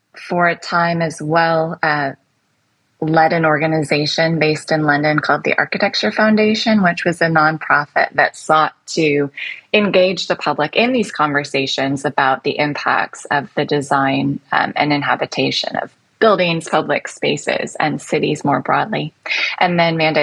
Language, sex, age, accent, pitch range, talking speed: English, female, 20-39, American, 145-175 Hz, 145 wpm